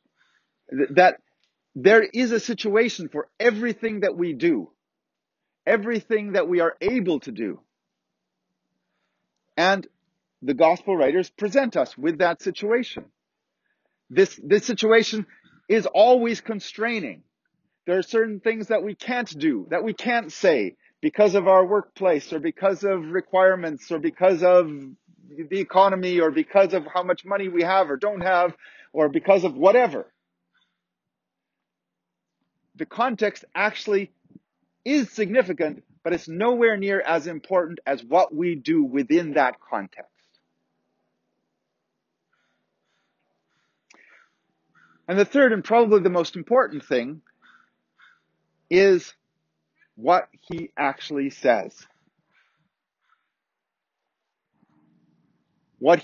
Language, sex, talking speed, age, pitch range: English, male, 110 wpm, 40-59, 170-230 Hz